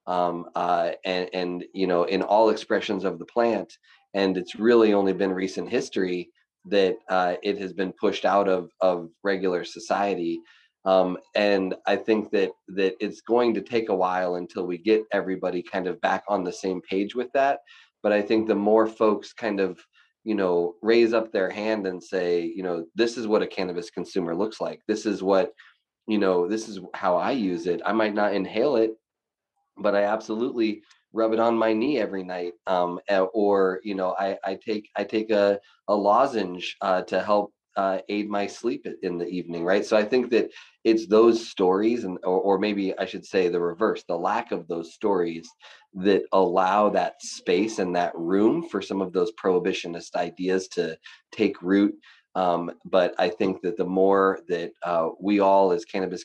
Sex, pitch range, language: male, 90-110 Hz, English